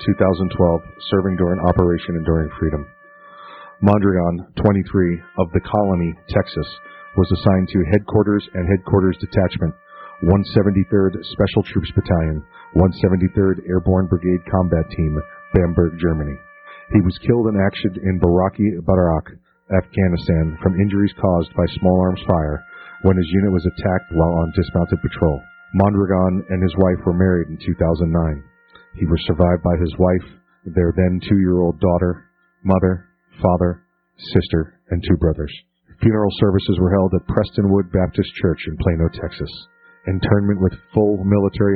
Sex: male